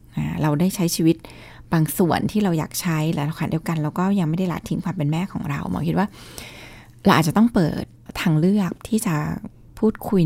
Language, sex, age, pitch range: Thai, female, 20-39, 165-200 Hz